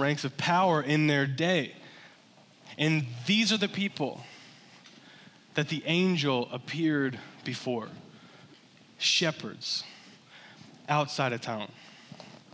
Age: 20-39